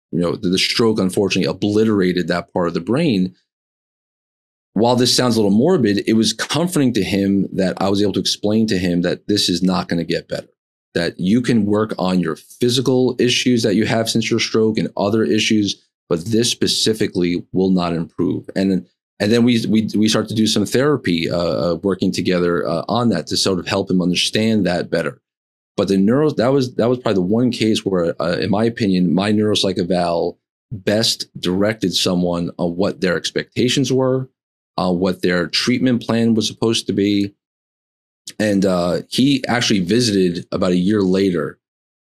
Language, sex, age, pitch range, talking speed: English, male, 40-59, 90-110 Hz, 185 wpm